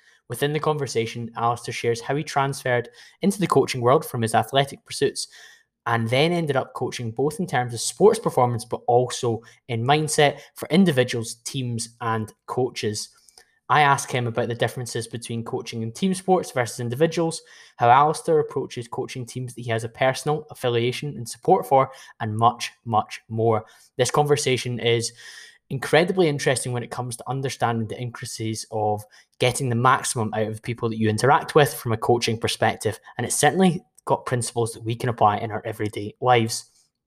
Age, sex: 10-29, male